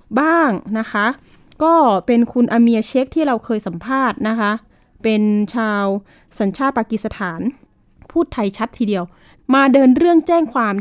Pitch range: 200-260 Hz